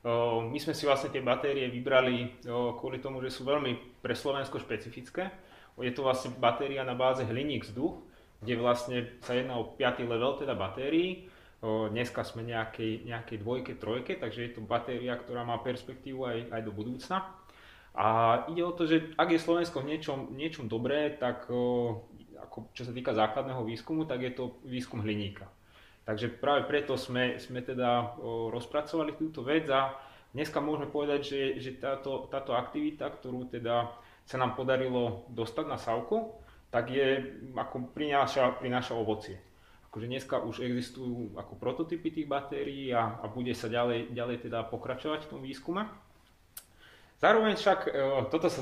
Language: Slovak